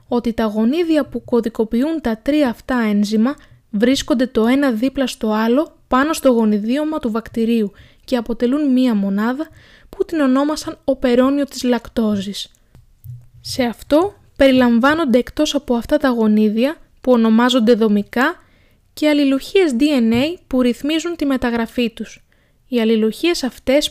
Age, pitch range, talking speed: 20-39, 220-275 Hz, 130 wpm